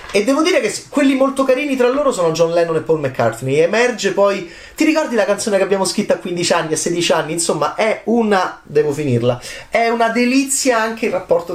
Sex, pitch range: male, 125-180 Hz